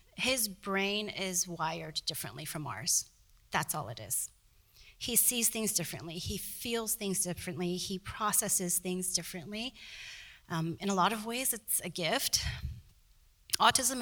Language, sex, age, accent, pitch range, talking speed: English, female, 30-49, American, 175-220 Hz, 140 wpm